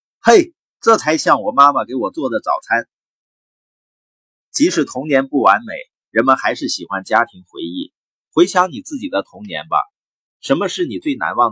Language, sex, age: Chinese, male, 30-49